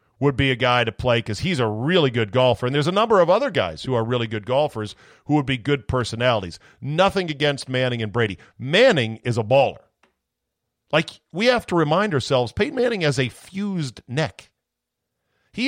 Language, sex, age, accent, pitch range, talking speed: English, male, 50-69, American, 110-150 Hz, 195 wpm